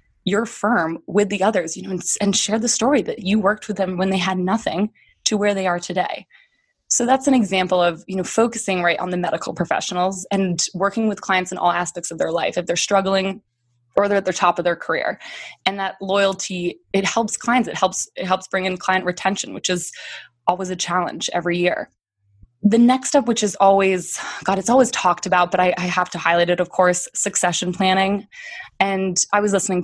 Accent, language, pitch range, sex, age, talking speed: American, English, 175-205 Hz, female, 20-39, 215 wpm